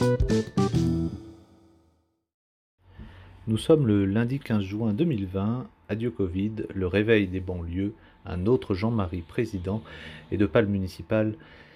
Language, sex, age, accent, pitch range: French, male, 40-59, French, 95-125 Hz